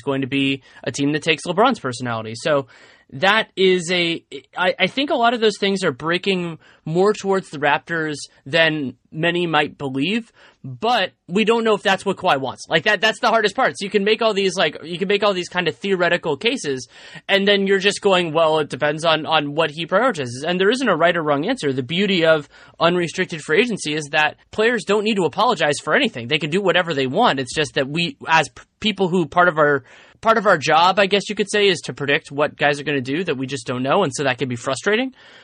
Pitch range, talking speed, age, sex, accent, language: 145-200 Hz, 240 wpm, 30-49, male, American, English